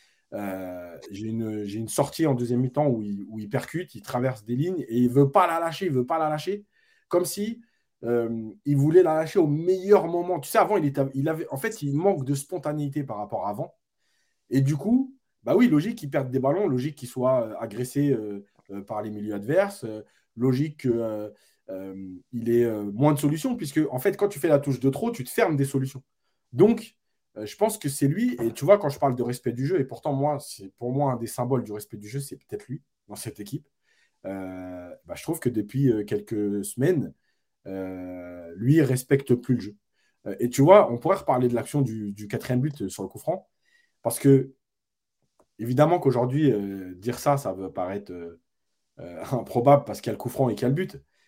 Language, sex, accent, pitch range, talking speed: French, male, French, 110-150 Hz, 225 wpm